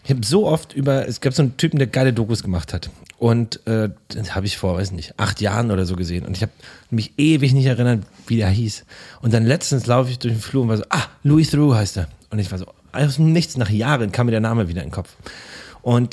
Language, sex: German, male